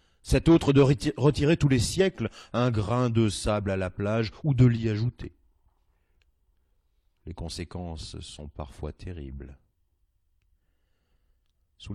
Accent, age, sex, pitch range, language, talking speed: French, 40-59, male, 85-130 Hz, French, 120 wpm